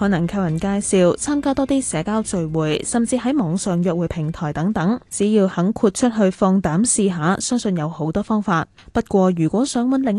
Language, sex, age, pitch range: Chinese, female, 10-29, 175-230 Hz